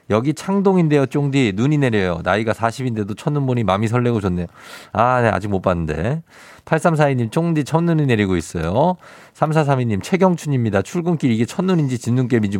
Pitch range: 105-155 Hz